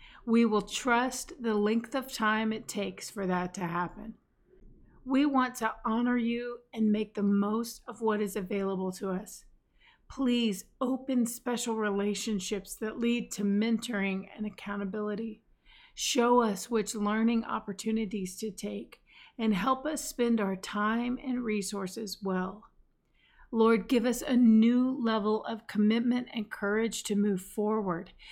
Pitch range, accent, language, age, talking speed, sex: 200-240 Hz, American, English, 40-59, 140 wpm, female